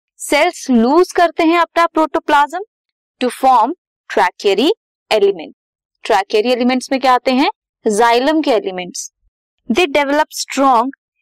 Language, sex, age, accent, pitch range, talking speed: Hindi, female, 20-39, native, 225-335 Hz, 120 wpm